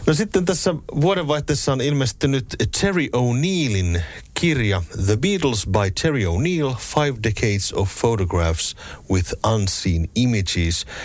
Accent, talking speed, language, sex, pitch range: native, 115 wpm, Finnish, male, 90-120 Hz